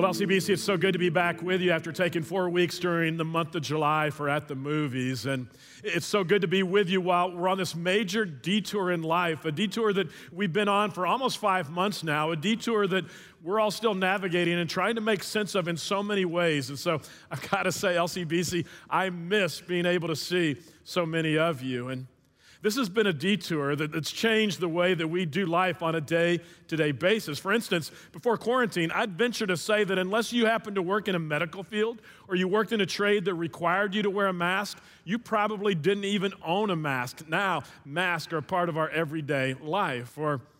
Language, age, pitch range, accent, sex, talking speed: English, 40-59, 165-200 Hz, American, male, 220 wpm